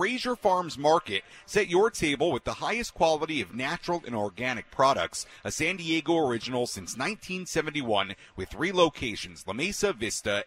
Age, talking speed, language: 40-59, 155 wpm, English